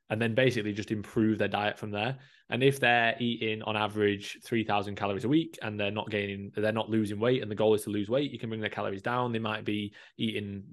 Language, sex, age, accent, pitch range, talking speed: English, male, 20-39, British, 105-115 Hz, 245 wpm